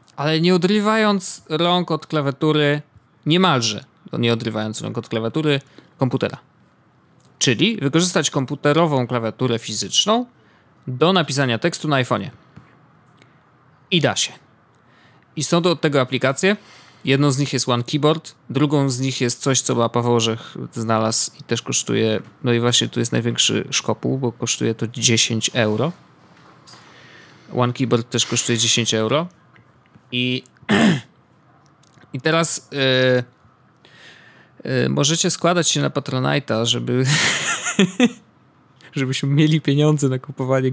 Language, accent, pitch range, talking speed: Polish, native, 120-155 Hz, 125 wpm